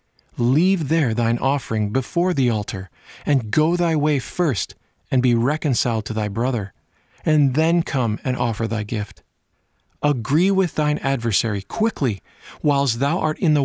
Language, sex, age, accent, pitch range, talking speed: English, male, 40-59, American, 110-145 Hz, 155 wpm